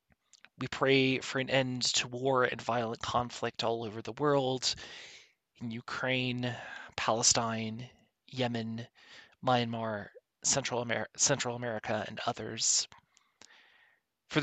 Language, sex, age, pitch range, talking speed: English, male, 30-49, 115-135 Hz, 105 wpm